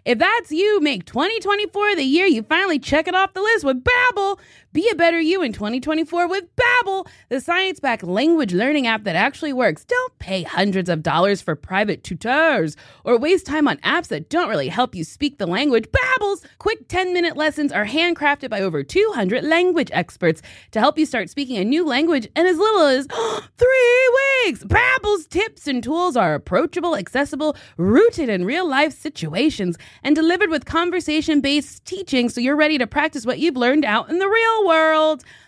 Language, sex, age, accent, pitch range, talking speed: English, female, 20-39, American, 230-360 Hz, 180 wpm